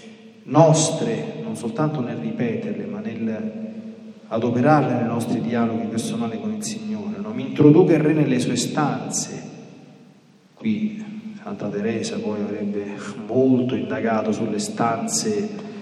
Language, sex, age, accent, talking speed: Italian, male, 40-59, native, 120 wpm